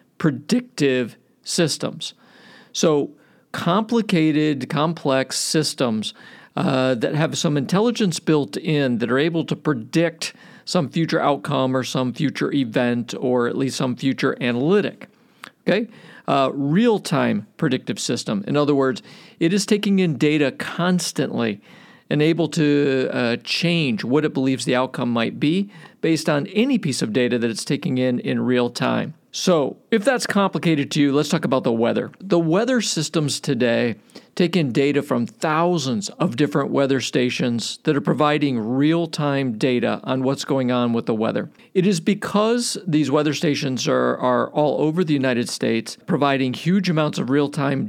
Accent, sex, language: American, male, English